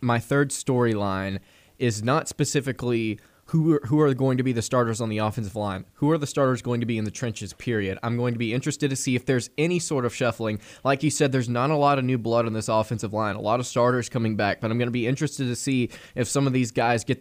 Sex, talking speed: male, 265 wpm